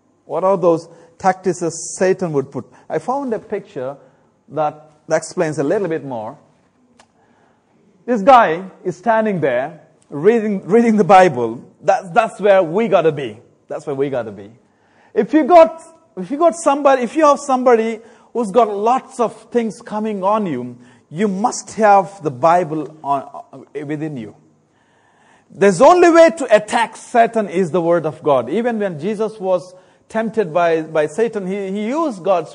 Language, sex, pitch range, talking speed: English, male, 170-240 Hz, 165 wpm